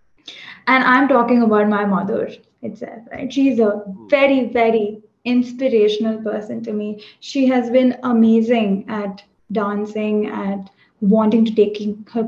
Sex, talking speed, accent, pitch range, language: female, 130 wpm, Indian, 215-265 Hz, English